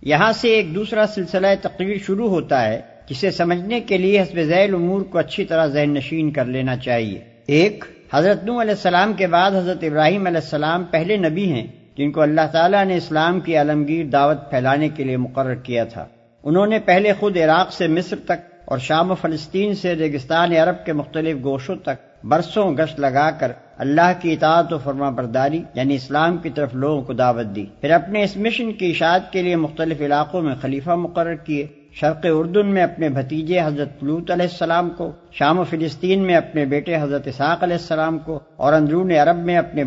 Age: 50-69